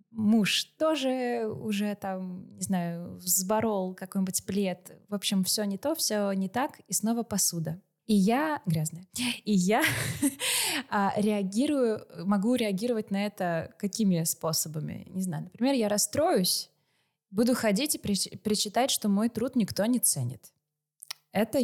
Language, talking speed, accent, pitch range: Russian, 135 wpm, native, 175-215 Hz